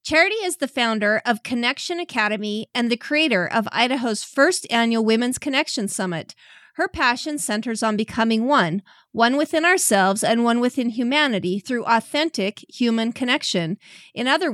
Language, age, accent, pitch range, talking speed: English, 40-59, American, 205-270 Hz, 150 wpm